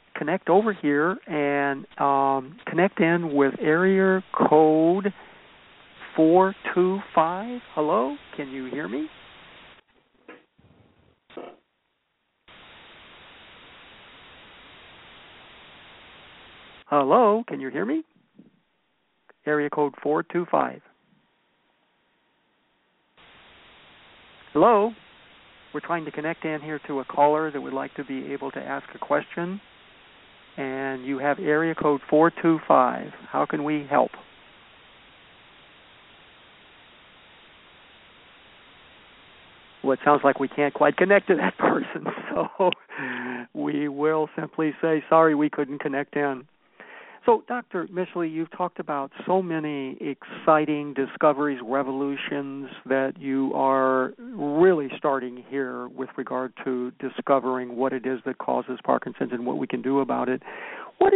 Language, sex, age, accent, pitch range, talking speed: English, male, 50-69, American, 135-170 Hz, 110 wpm